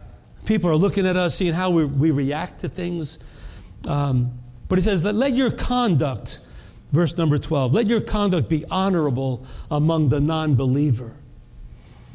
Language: English